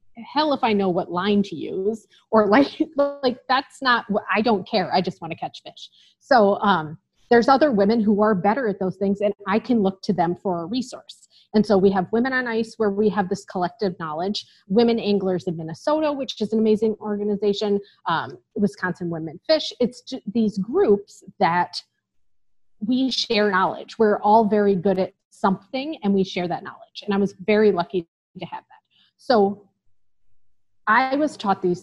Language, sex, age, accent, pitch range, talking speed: English, female, 30-49, American, 185-230 Hz, 190 wpm